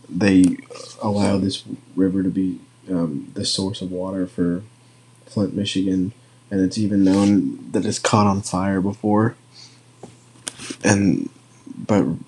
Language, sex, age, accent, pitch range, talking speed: English, male, 20-39, American, 95-105 Hz, 125 wpm